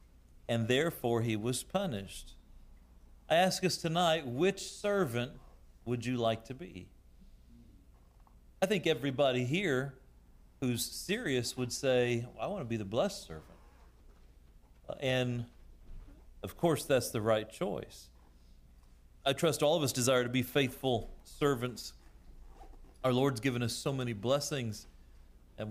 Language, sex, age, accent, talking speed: English, male, 40-59, American, 130 wpm